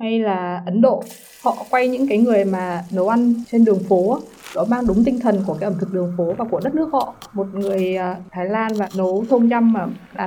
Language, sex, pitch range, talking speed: Vietnamese, female, 200-245 Hz, 250 wpm